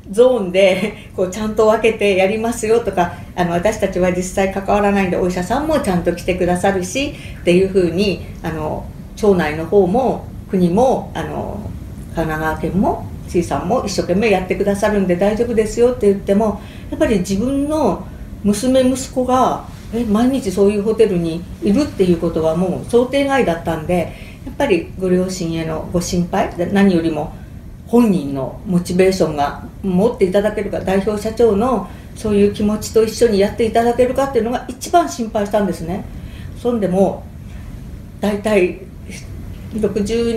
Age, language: 50-69, Japanese